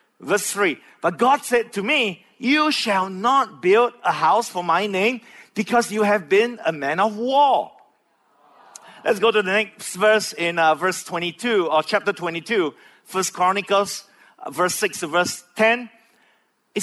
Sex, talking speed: male, 160 wpm